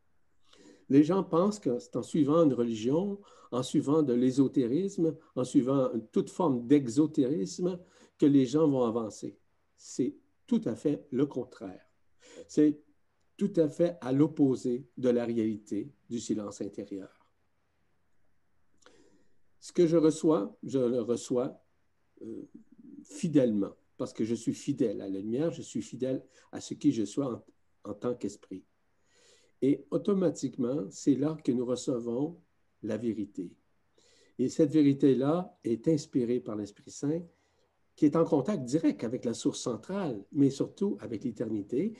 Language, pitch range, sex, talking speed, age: French, 115-165 Hz, male, 140 wpm, 60-79